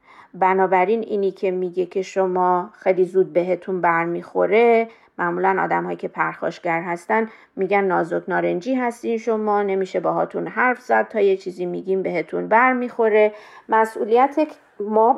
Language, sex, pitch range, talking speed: Persian, female, 185-225 Hz, 140 wpm